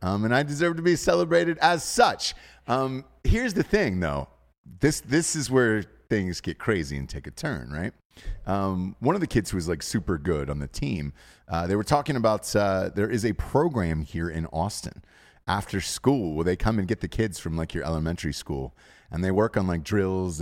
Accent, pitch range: American, 80-110 Hz